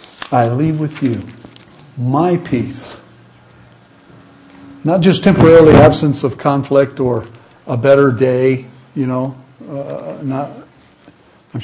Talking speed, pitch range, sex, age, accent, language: 105 wpm, 125-155 Hz, male, 60-79, American, English